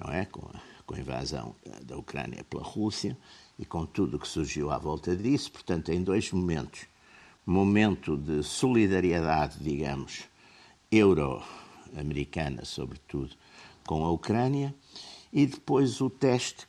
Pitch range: 75-105 Hz